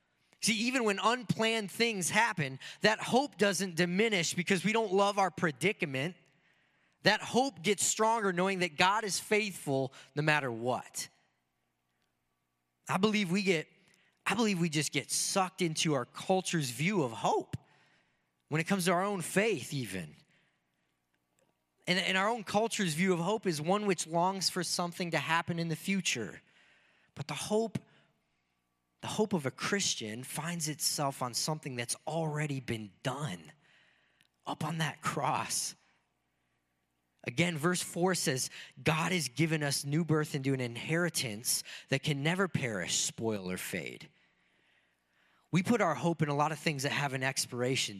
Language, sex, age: English, male, 20-39